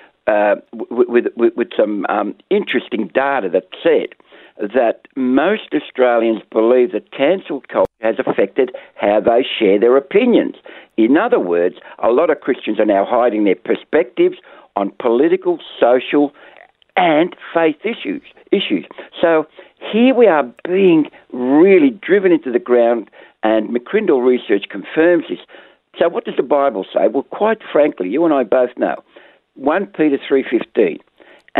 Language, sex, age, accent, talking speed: English, male, 60-79, Australian, 140 wpm